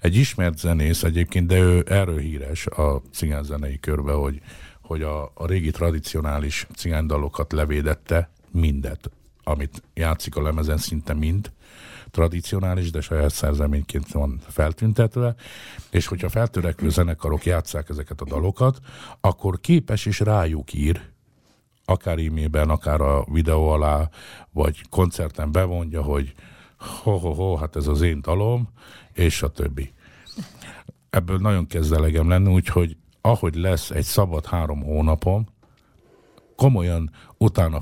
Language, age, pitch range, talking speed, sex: Hungarian, 50-69, 75-95 Hz, 120 wpm, male